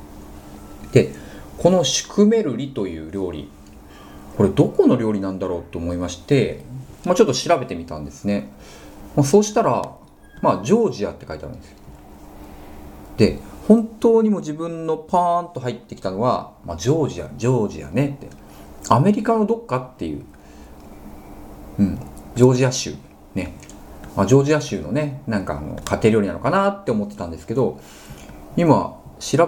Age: 40-59